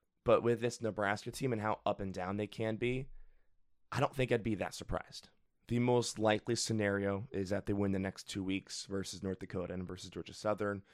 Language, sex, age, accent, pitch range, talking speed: English, male, 20-39, American, 95-110 Hz, 215 wpm